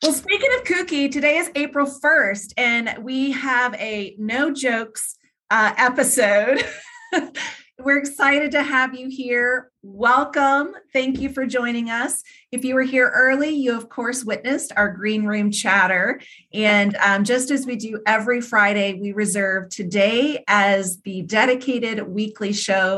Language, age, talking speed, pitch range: English, 30-49, 145 wpm, 195-260 Hz